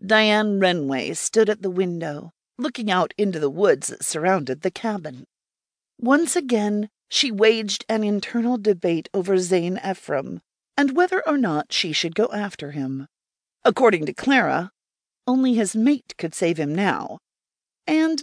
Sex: female